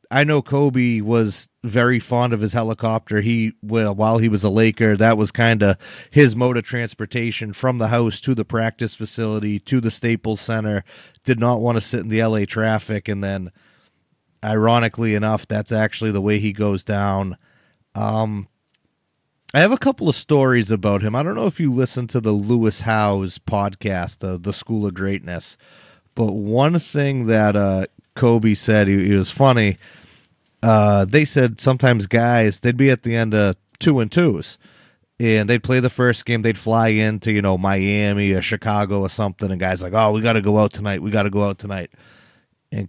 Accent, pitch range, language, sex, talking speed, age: American, 105-125 Hz, English, male, 190 wpm, 30-49